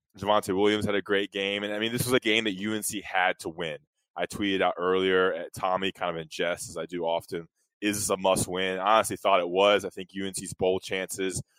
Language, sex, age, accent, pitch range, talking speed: English, male, 20-39, American, 95-105 Hz, 240 wpm